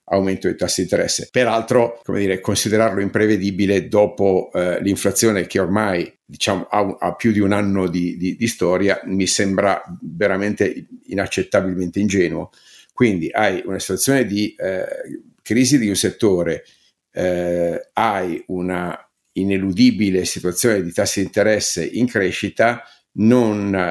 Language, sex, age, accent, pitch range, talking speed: Italian, male, 50-69, native, 90-110 Hz, 125 wpm